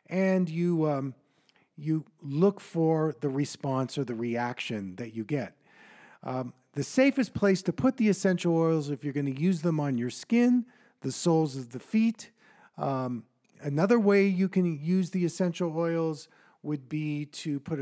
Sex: male